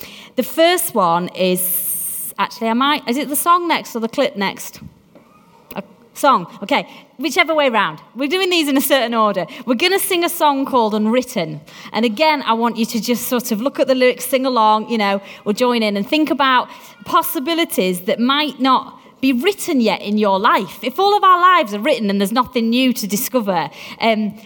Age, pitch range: 30-49, 215-285 Hz